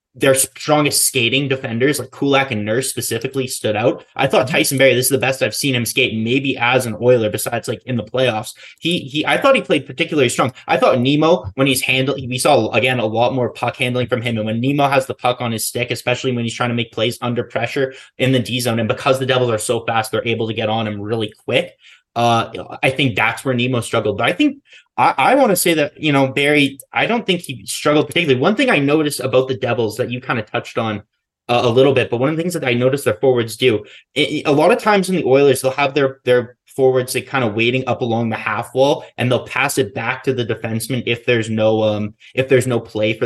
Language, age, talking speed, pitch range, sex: English, 20-39, 260 wpm, 120-145 Hz, male